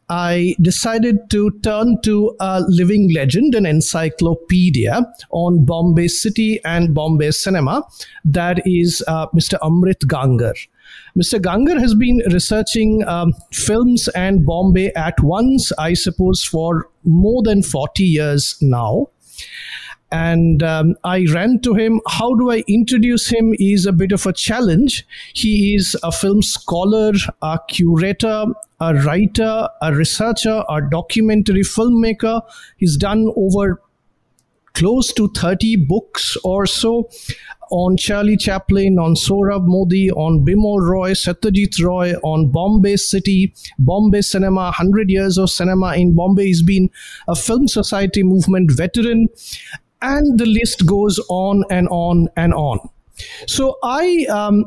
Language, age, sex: English, 50-69, male